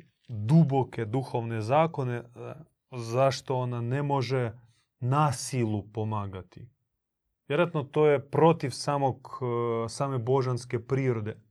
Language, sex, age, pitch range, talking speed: Croatian, male, 30-49, 120-145 Hz, 90 wpm